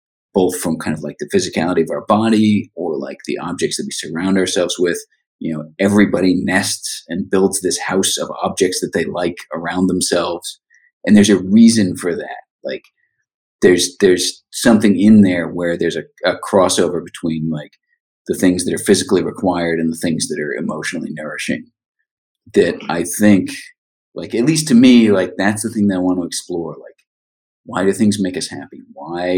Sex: male